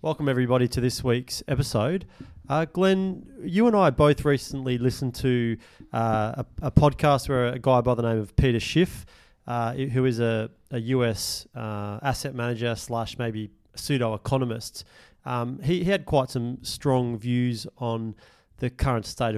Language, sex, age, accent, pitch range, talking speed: English, male, 30-49, Australian, 115-135 Hz, 160 wpm